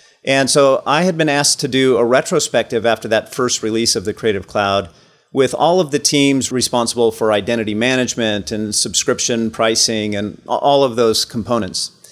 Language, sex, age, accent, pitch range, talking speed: English, male, 40-59, American, 110-140 Hz, 175 wpm